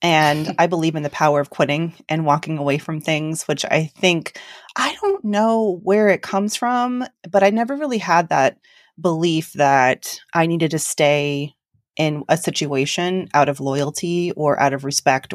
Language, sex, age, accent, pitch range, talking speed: English, female, 30-49, American, 145-185 Hz, 175 wpm